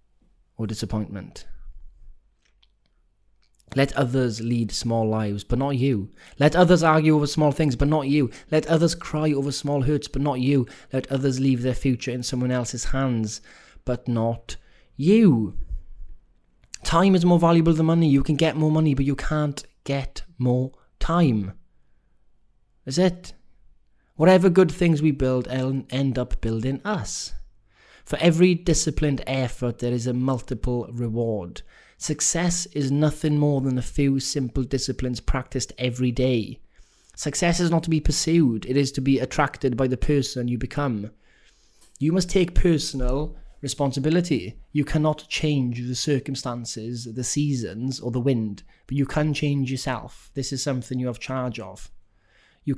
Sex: male